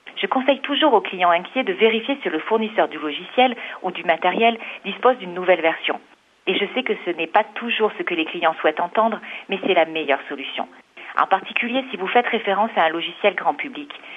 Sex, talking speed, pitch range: female, 210 wpm, 170-230 Hz